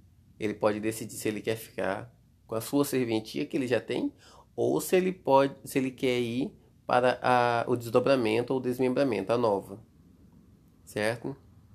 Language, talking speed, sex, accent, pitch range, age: Portuguese, 150 wpm, male, Brazilian, 110-130 Hz, 20-39